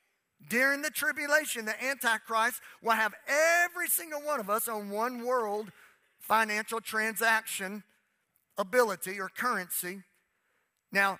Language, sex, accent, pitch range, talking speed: English, male, American, 190-230 Hz, 115 wpm